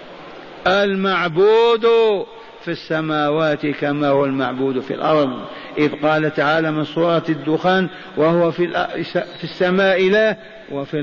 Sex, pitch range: male, 145-195 Hz